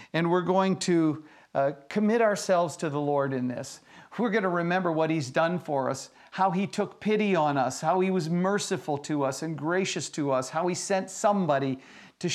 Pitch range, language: 145-185 Hz, English